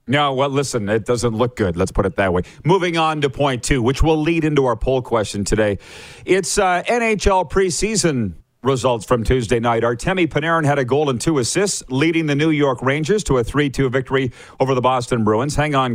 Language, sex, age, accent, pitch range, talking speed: English, male, 40-59, American, 130-180 Hz, 215 wpm